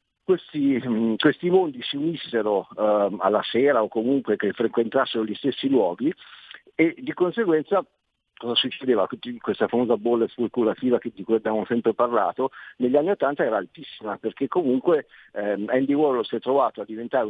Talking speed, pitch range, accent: 155 wpm, 100-125 Hz, native